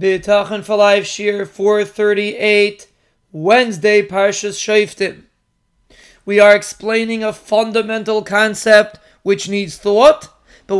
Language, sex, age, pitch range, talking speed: English, male, 30-49, 215-255 Hz, 85 wpm